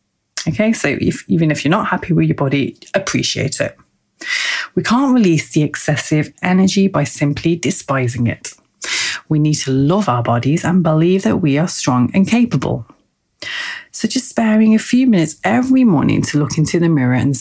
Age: 30-49